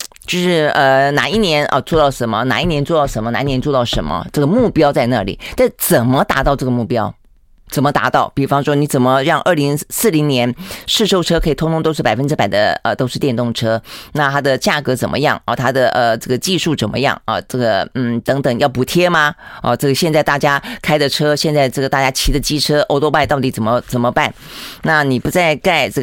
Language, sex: Chinese, female